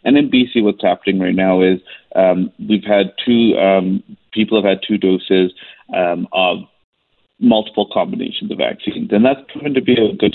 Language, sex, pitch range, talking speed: English, male, 95-110 Hz, 180 wpm